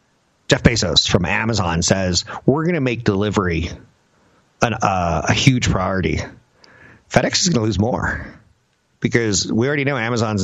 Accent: American